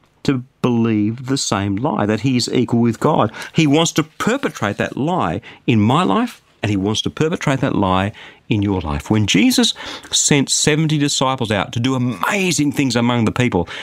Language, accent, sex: English, Australian, male